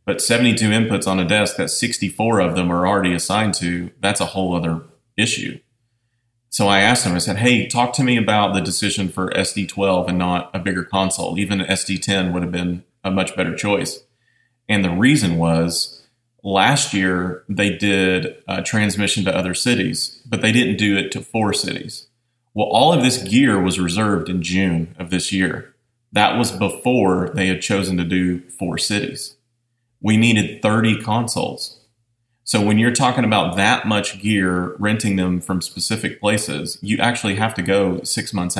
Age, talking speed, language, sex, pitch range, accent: 30-49, 180 wpm, English, male, 90-110 Hz, American